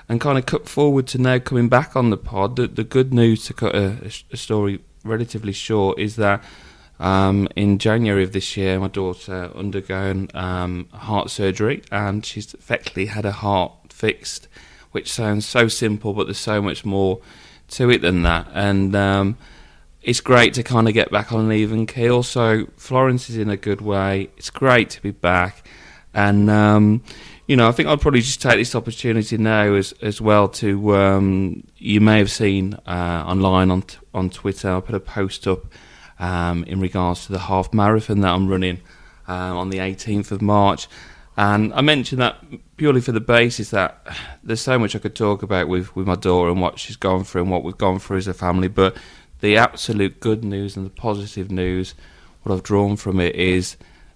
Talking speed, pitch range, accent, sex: 200 wpm, 95-110 Hz, British, male